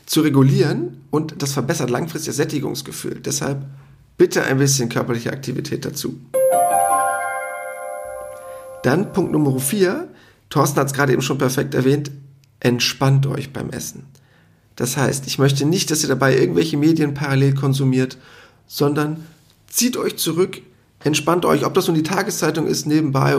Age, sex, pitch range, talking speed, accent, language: 40-59, male, 130-160 Hz, 145 wpm, German, German